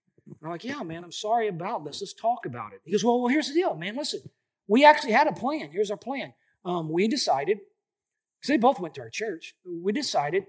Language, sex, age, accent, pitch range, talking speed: English, male, 40-59, American, 200-320 Hz, 235 wpm